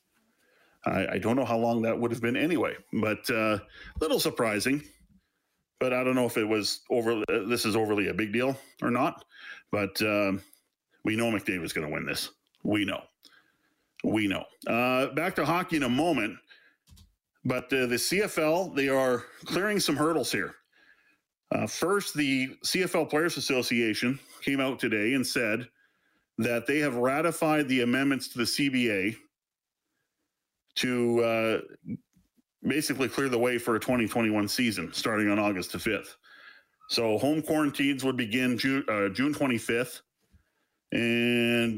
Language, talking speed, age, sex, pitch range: English, 155 wpm, 40-59, male, 115-145 Hz